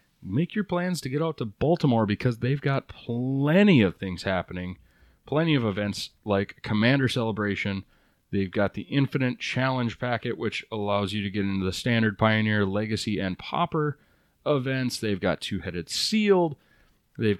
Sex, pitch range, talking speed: male, 100-135 Hz, 160 wpm